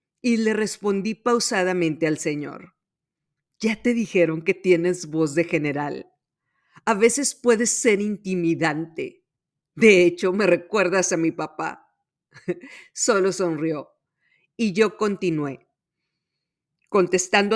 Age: 50-69